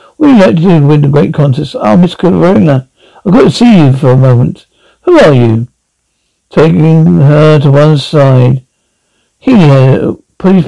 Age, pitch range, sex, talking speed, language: 60-79, 130-175 Hz, male, 180 wpm, English